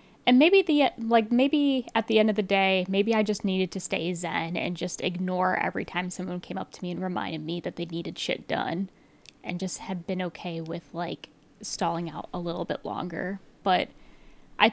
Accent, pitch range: American, 180-200 Hz